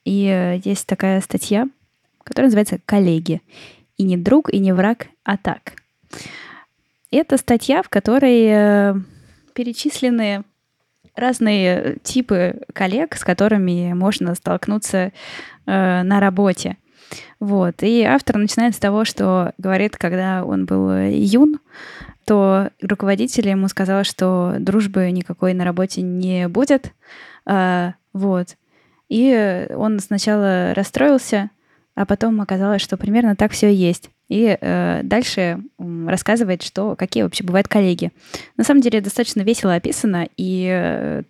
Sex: female